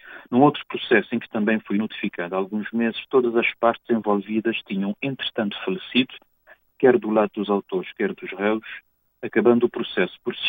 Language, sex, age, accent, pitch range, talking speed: Portuguese, male, 50-69, Portuguese, 100-120 Hz, 175 wpm